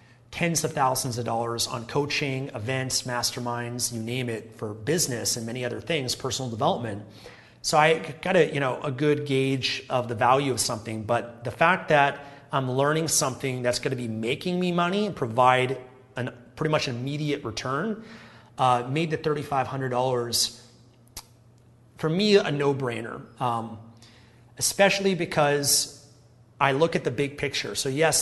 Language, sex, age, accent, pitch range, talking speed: English, male, 30-49, American, 120-150 Hz, 155 wpm